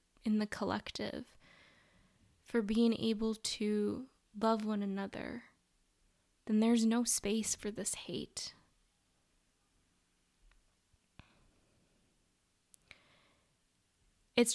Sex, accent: female, American